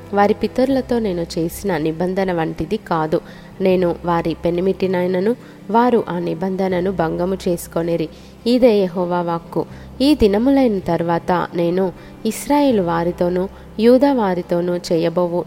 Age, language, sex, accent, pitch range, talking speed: 20-39, Telugu, female, native, 175-215 Hz, 105 wpm